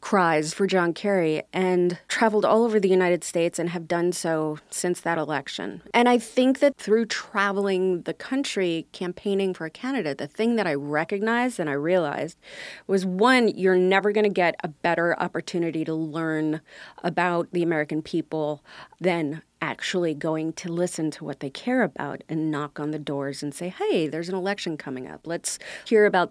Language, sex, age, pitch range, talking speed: English, female, 30-49, 160-210 Hz, 180 wpm